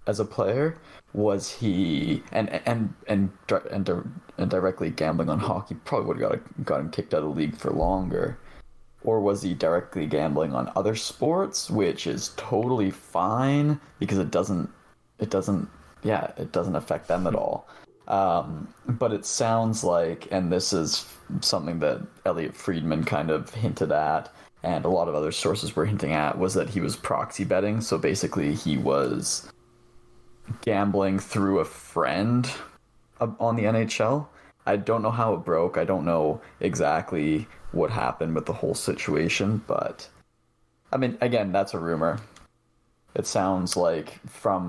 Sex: male